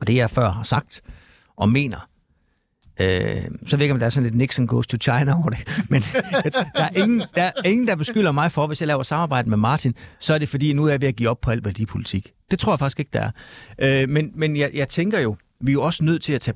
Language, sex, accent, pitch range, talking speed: Danish, male, native, 110-140 Hz, 265 wpm